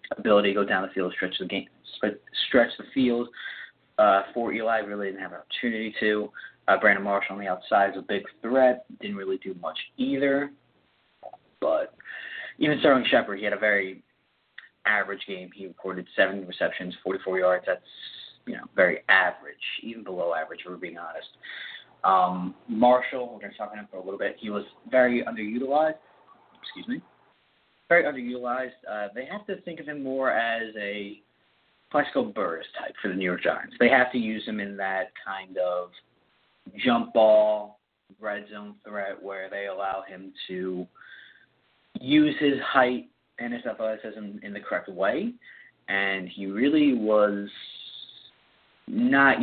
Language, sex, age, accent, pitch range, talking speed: English, male, 30-49, American, 95-125 Hz, 165 wpm